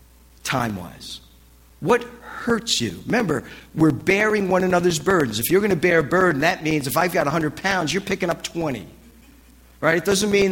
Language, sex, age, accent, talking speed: English, male, 50-69, American, 185 wpm